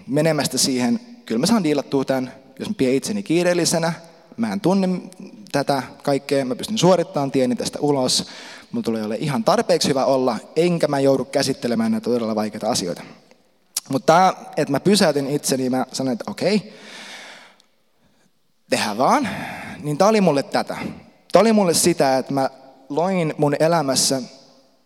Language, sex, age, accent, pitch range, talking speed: Finnish, male, 20-39, native, 130-175 Hz, 155 wpm